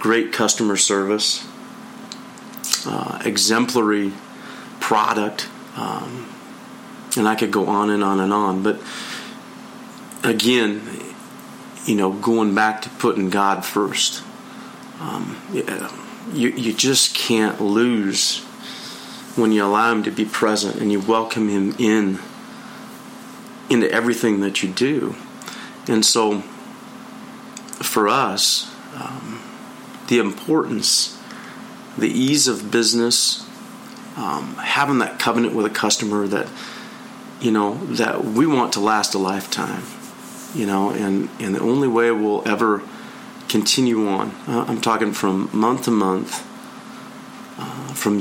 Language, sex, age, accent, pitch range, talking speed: English, male, 40-59, American, 105-145 Hz, 120 wpm